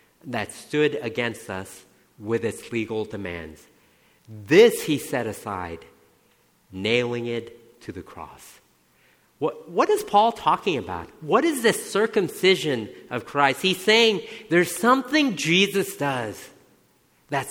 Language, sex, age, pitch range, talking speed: English, male, 50-69, 130-190 Hz, 125 wpm